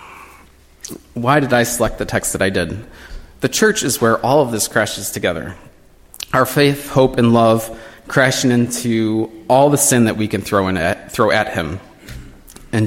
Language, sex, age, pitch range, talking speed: English, male, 20-39, 110-125 Hz, 175 wpm